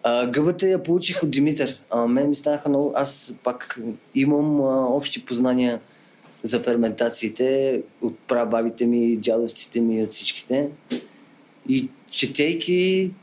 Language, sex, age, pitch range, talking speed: Bulgarian, male, 30-49, 120-145 Hz, 120 wpm